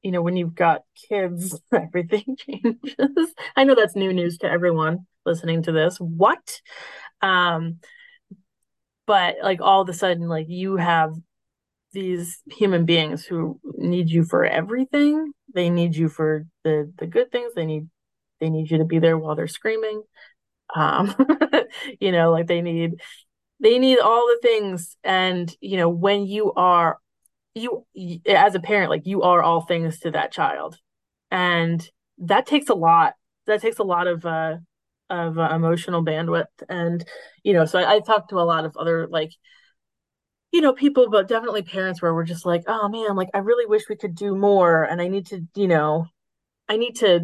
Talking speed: 180 wpm